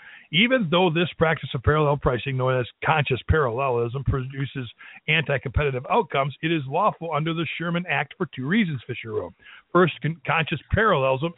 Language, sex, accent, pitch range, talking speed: English, male, American, 135-205 Hz, 165 wpm